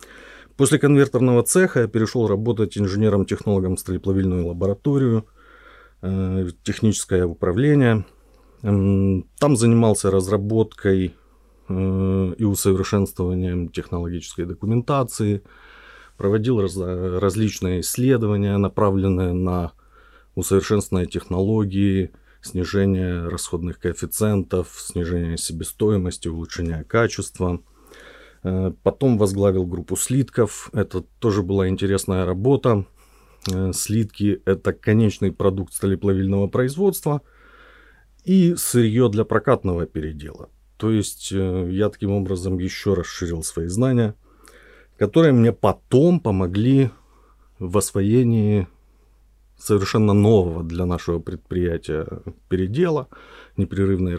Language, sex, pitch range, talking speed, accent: Ukrainian, male, 90-110 Hz, 90 wpm, native